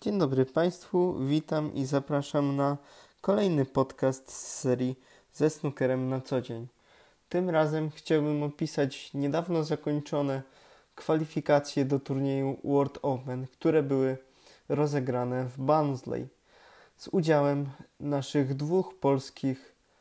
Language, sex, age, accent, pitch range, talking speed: Polish, male, 20-39, native, 135-165 Hz, 110 wpm